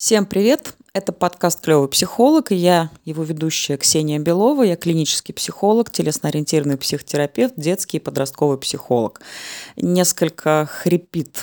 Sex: female